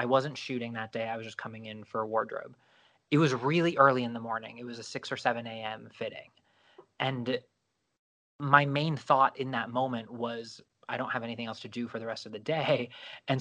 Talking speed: 225 wpm